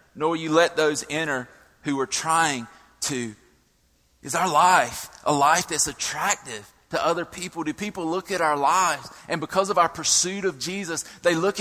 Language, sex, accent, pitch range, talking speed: English, male, American, 130-170 Hz, 175 wpm